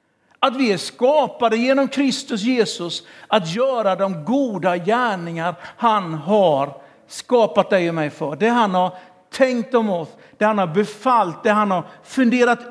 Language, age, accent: Swedish, 60-79, native